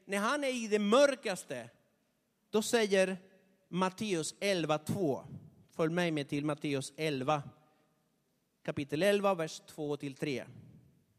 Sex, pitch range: male, 165-230 Hz